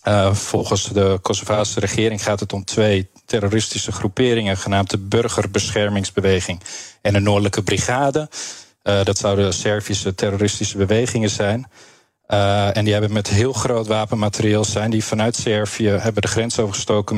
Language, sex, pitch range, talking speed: Dutch, male, 95-110 Hz, 145 wpm